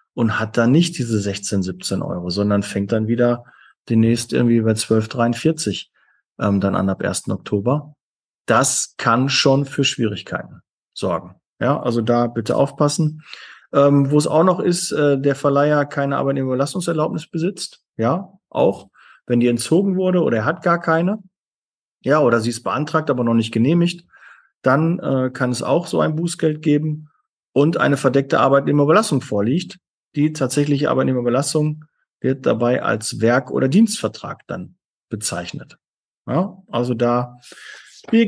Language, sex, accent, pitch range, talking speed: German, male, German, 120-165 Hz, 145 wpm